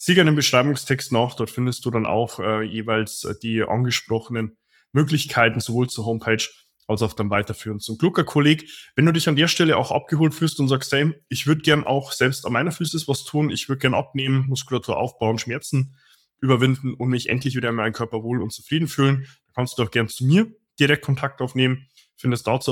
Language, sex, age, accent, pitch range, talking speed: German, male, 20-39, German, 115-145 Hz, 205 wpm